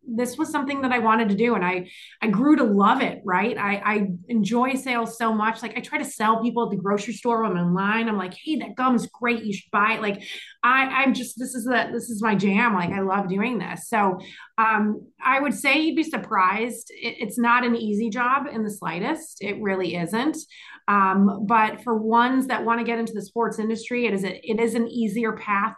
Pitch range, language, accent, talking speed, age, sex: 200-245 Hz, English, American, 235 wpm, 30-49, female